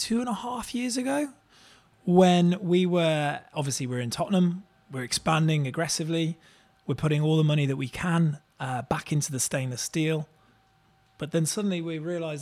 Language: English